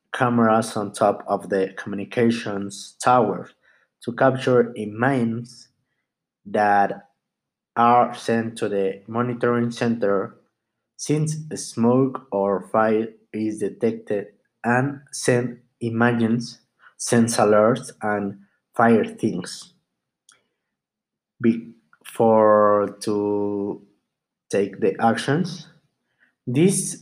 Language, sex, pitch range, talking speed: English, male, 110-130 Hz, 85 wpm